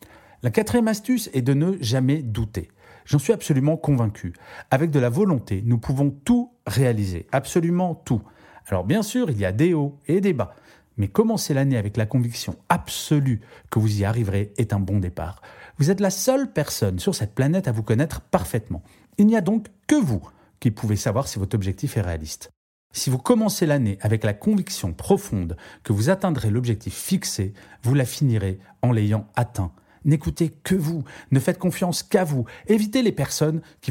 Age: 40-59